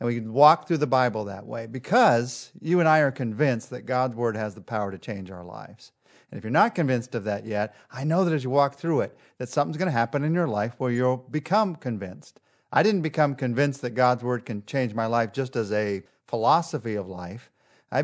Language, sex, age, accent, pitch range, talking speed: English, male, 40-59, American, 115-150 Hz, 235 wpm